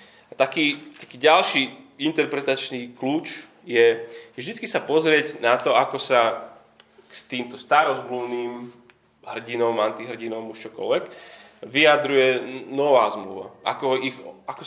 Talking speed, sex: 115 wpm, male